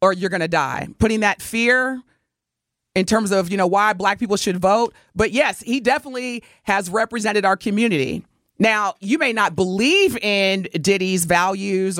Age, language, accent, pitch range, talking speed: 30-49, English, American, 170-225 Hz, 170 wpm